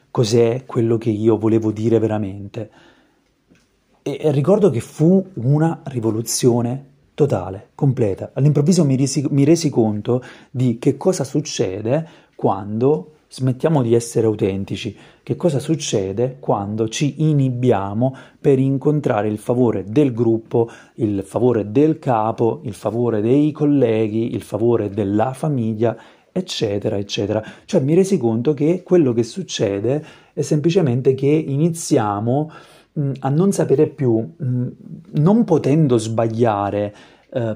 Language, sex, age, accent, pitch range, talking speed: Italian, male, 30-49, native, 115-150 Hz, 115 wpm